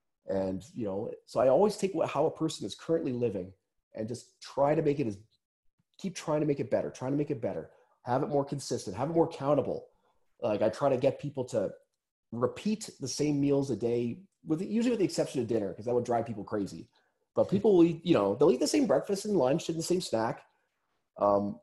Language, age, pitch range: English, 30-49, 115-165 Hz